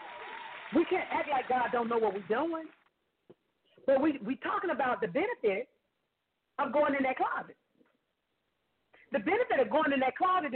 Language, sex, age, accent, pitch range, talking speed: English, female, 40-59, American, 220-295 Hz, 165 wpm